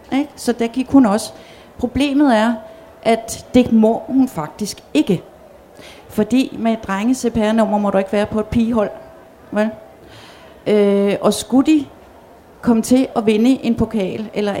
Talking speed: 140 wpm